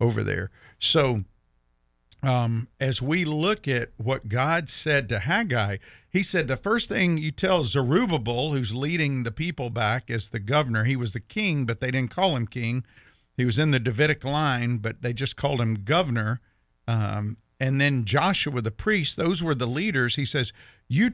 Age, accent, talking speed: 50-69, American, 180 wpm